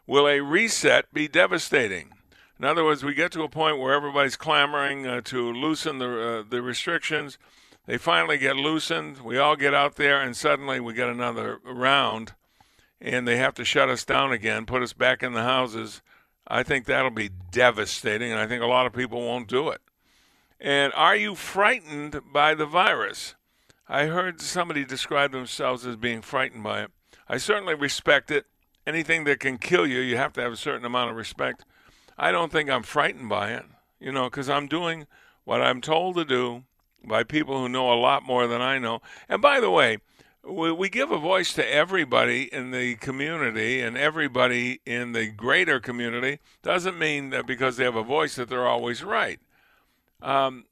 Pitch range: 125-150 Hz